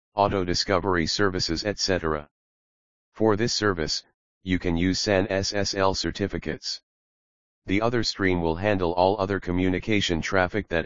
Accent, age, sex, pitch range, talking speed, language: American, 40-59, male, 80-100 Hz, 120 wpm, English